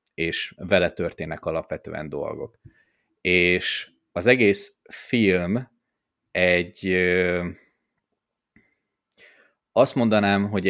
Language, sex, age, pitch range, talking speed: Hungarian, male, 30-49, 90-105 Hz, 75 wpm